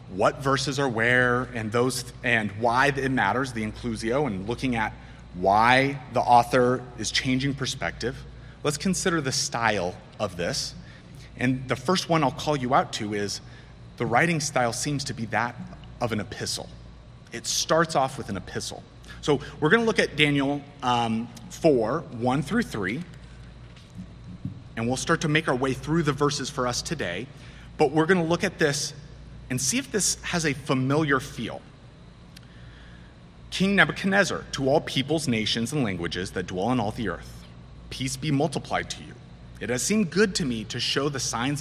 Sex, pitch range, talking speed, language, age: male, 110-145 Hz, 175 wpm, English, 30-49